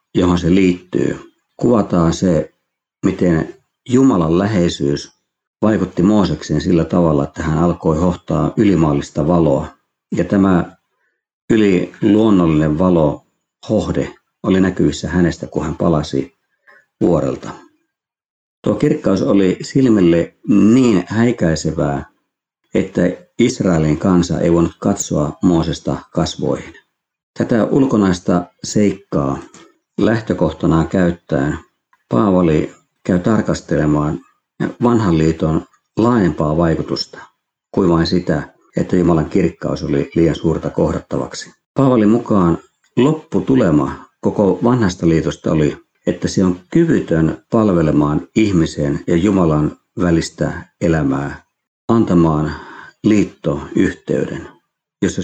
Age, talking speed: 50-69, 95 wpm